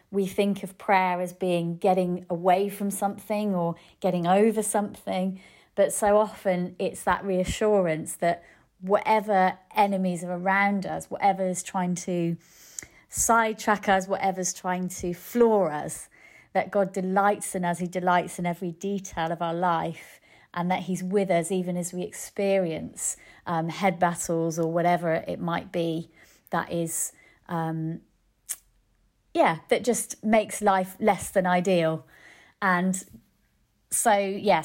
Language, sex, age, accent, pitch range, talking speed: English, female, 30-49, British, 175-210 Hz, 140 wpm